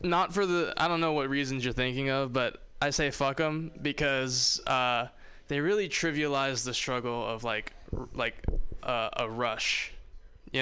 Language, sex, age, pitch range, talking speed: English, male, 20-39, 125-160 Hz, 165 wpm